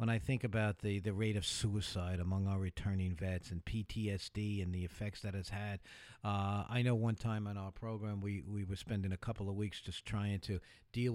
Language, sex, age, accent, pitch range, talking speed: English, male, 50-69, American, 95-120 Hz, 220 wpm